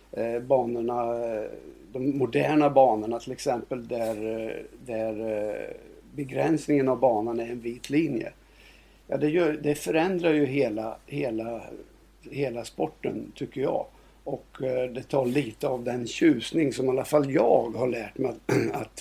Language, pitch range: Swedish, 125-155 Hz